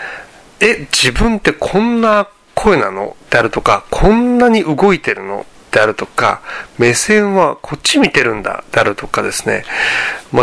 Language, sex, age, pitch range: Japanese, male, 40-59, 125-190 Hz